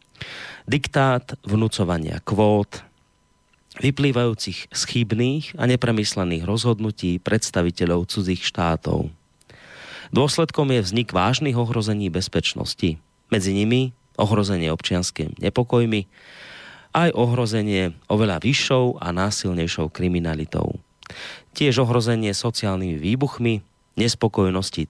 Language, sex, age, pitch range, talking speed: Slovak, male, 30-49, 90-120 Hz, 80 wpm